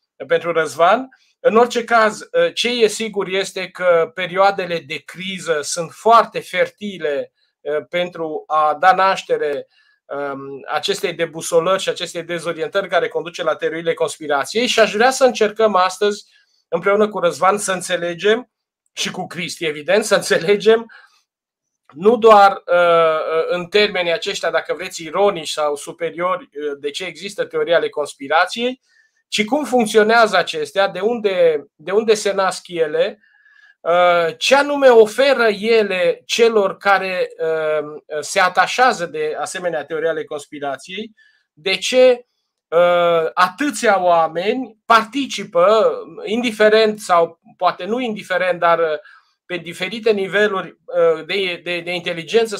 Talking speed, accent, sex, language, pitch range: 115 wpm, native, male, Romanian, 170-230 Hz